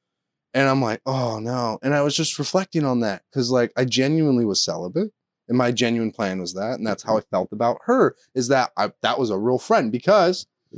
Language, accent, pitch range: English, American, 110-145 Hz